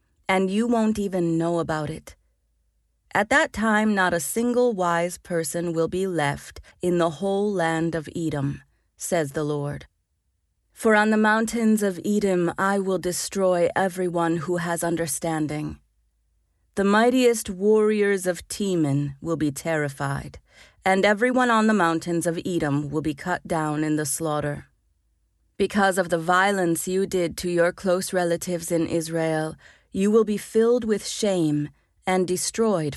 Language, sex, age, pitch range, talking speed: English, female, 30-49, 150-200 Hz, 150 wpm